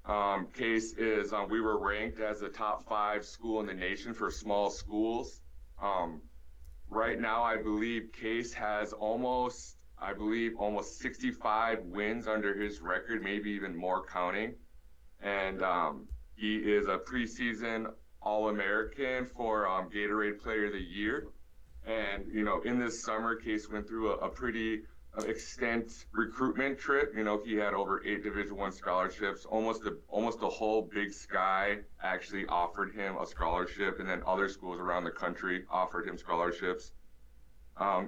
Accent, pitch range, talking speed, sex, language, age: American, 95-110 Hz, 155 wpm, male, English, 30-49